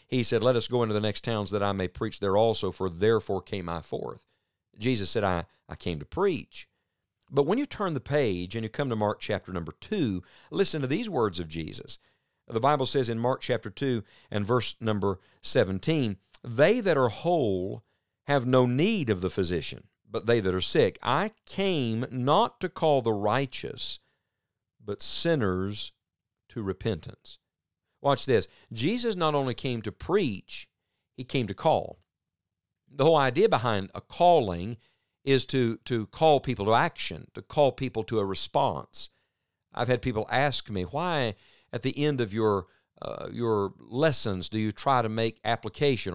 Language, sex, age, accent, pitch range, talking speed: English, male, 50-69, American, 100-135 Hz, 175 wpm